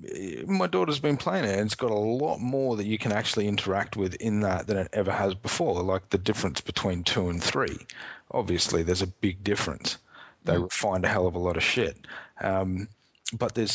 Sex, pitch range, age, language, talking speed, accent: male, 95-110 Hz, 30-49, English, 210 wpm, Australian